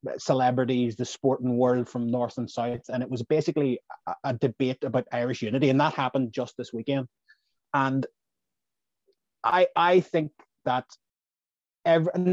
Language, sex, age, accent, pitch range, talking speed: English, male, 30-49, Irish, 125-155 Hz, 145 wpm